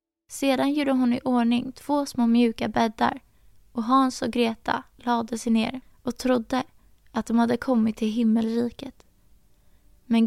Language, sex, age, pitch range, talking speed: Swedish, female, 20-39, 220-250 Hz, 145 wpm